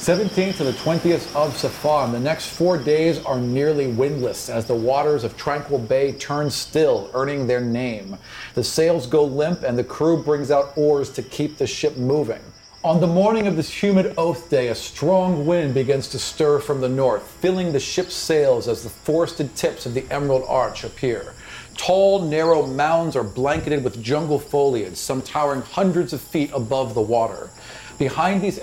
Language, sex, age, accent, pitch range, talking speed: English, male, 40-59, American, 125-160 Hz, 180 wpm